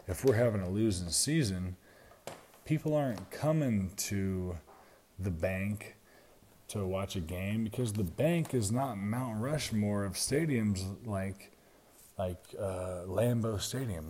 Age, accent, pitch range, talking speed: 30-49, American, 95-125 Hz, 130 wpm